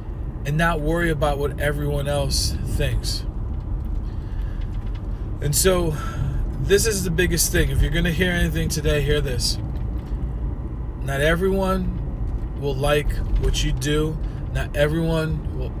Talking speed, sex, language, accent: 125 wpm, male, English, American